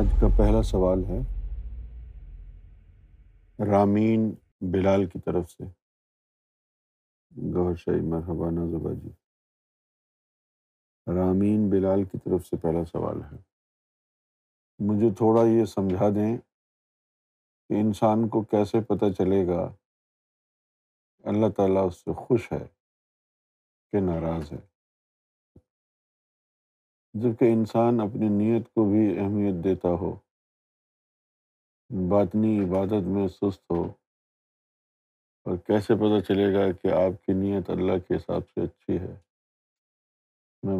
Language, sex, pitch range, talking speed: Urdu, male, 85-105 Hz, 105 wpm